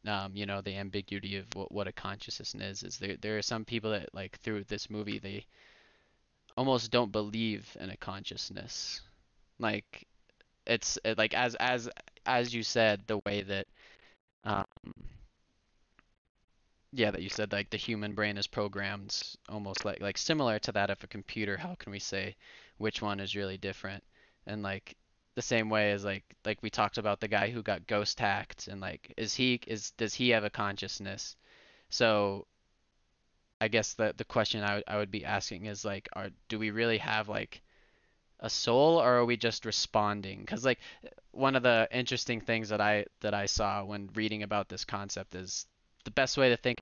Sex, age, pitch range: male, 20-39, 100-110 Hz